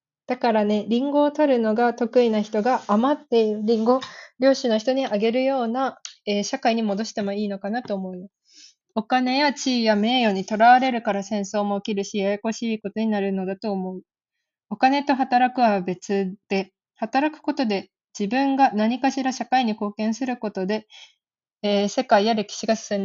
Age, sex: 20-39, female